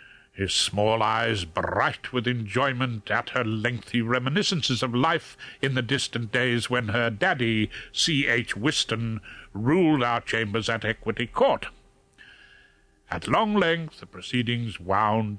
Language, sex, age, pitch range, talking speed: English, male, 60-79, 115-185 Hz, 130 wpm